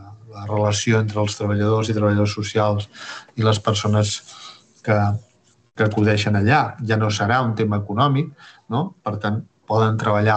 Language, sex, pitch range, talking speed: Spanish, male, 105-130 Hz, 150 wpm